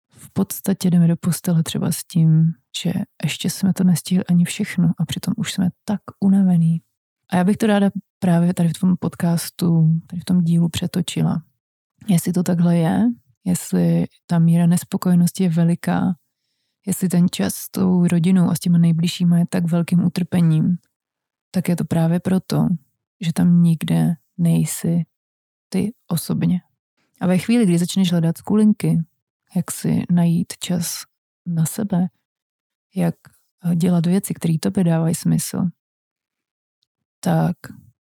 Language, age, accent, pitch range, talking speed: Czech, 30-49, native, 165-185 Hz, 145 wpm